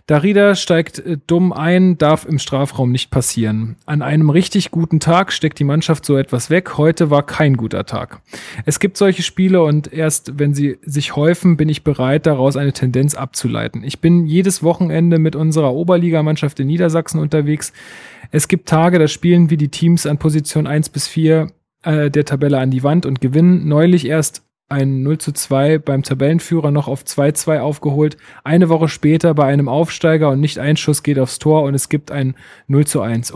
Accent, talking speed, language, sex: German, 180 wpm, German, male